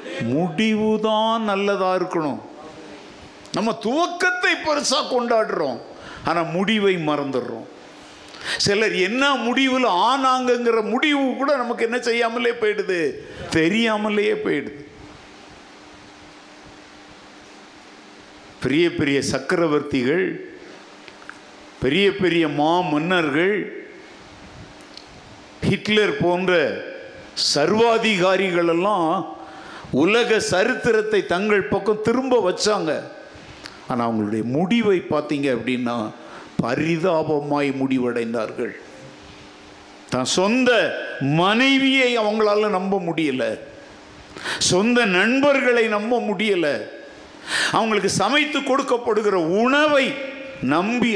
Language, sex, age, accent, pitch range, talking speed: Tamil, male, 50-69, native, 155-245 Hz, 60 wpm